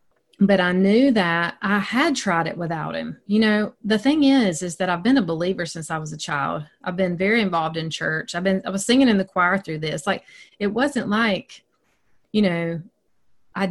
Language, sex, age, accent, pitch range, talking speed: English, female, 30-49, American, 170-215 Hz, 215 wpm